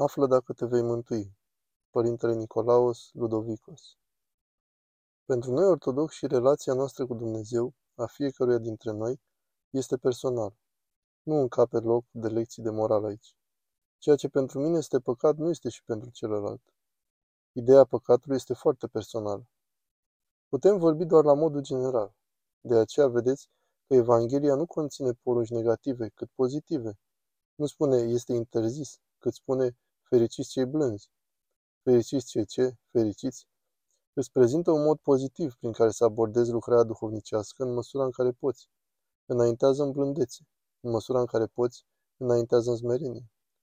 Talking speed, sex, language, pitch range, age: 140 wpm, male, Romanian, 115-135 Hz, 20-39